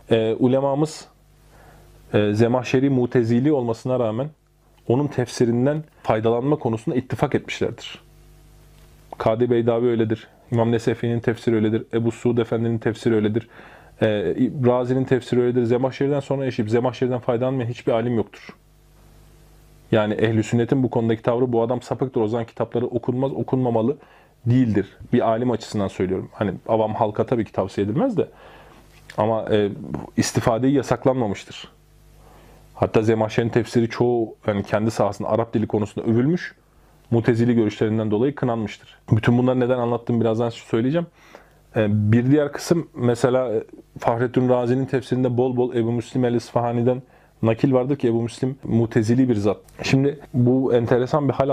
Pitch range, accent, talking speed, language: 110-130 Hz, native, 135 wpm, Turkish